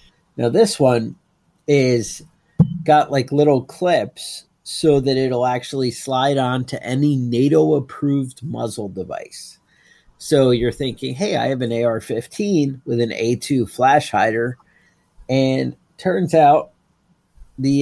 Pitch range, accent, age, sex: 115-145 Hz, American, 30-49, male